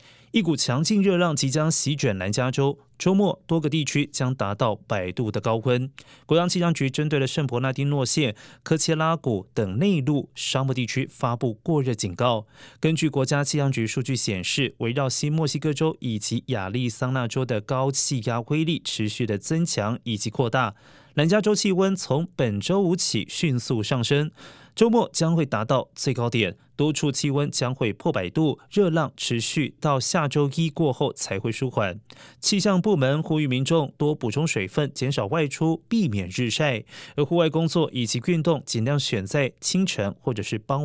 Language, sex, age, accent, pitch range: Chinese, male, 20-39, native, 120-160 Hz